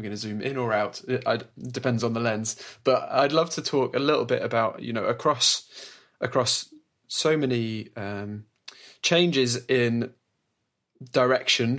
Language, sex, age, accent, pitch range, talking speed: English, male, 20-39, British, 110-125 Hz, 165 wpm